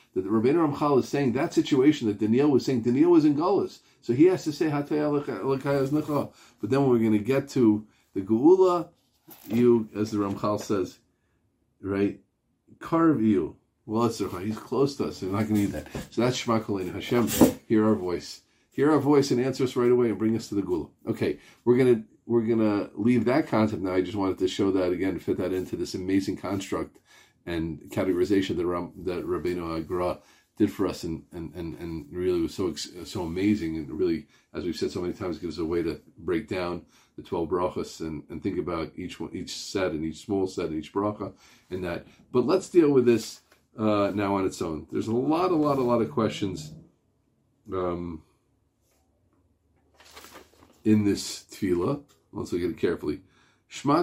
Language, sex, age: English, male, 40-59